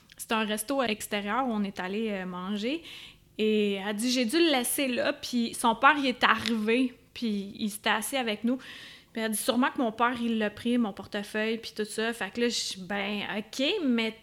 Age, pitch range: 20-39, 225-280 Hz